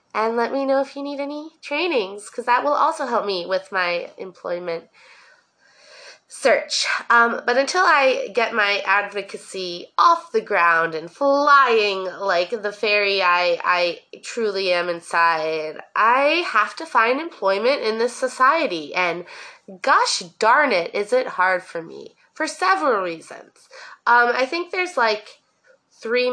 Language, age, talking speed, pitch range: English, 20-39, 150 wpm, 190-275 Hz